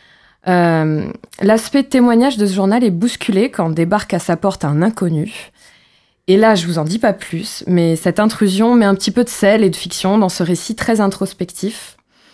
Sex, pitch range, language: female, 185-225 Hz, French